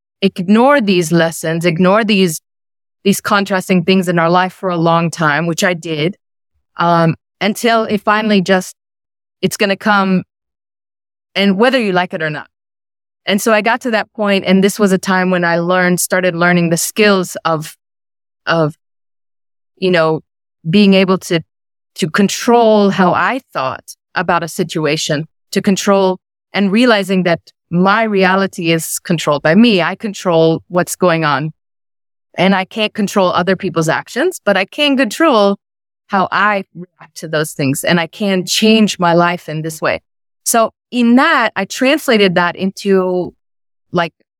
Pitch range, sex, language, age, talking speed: 160-195 Hz, female, English, 30-49, 160 wpm